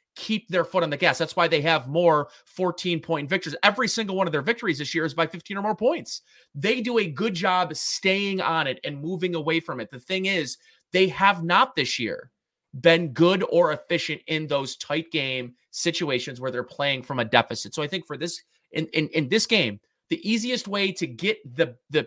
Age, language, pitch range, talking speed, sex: 30-49, English, 145-190 Hz, 220 wpm, male